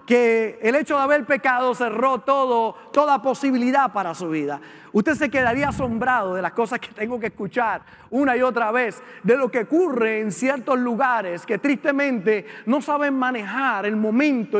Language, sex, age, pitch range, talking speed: Spanish, male, 30-49, 220-270 Hz, 175 wpm